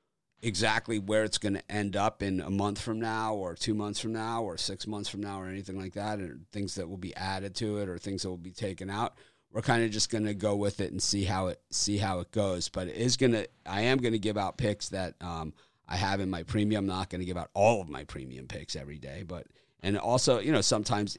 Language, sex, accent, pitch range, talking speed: English, male, American, 90-105 Hz, 260 wpm